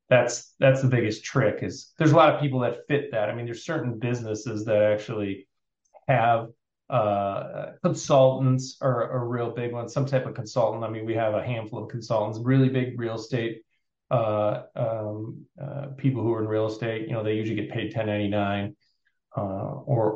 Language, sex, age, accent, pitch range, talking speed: English, male, 30-49, American, 110-130 Hz, 185 wpm